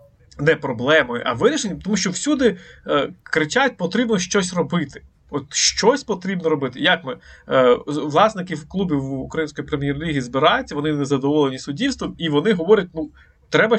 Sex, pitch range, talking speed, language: male, 140-190 Hz, 145 wpm, Ukrainian